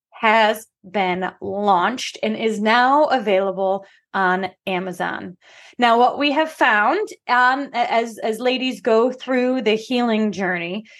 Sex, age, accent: female, 20-39, American